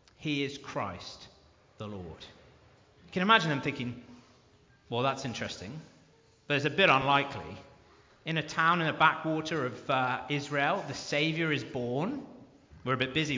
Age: 40-59